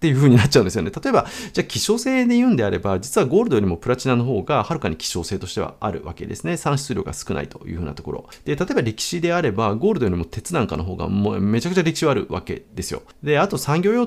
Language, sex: Japanese, male